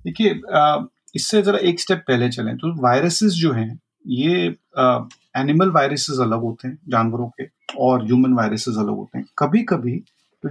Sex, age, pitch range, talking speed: male, 40-59, 125-175 Hz, 165 wpm